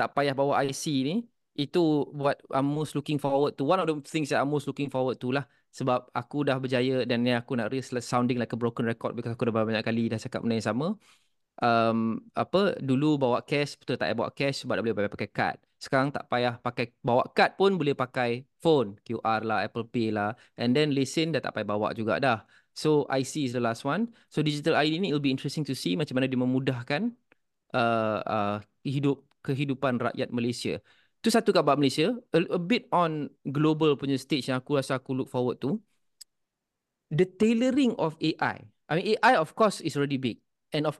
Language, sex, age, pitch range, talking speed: Malay, male, 20-39, 120-150 Hz, 210 wpm